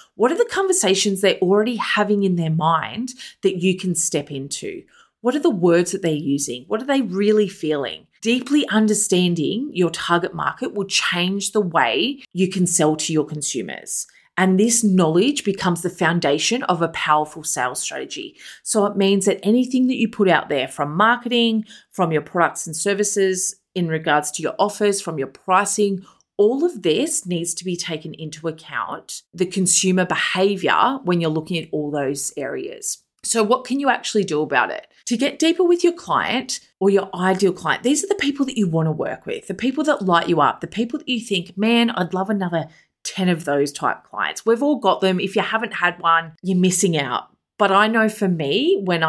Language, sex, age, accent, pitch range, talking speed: English, female, 30-49, Australian, 165-225 Hz, 200 wpm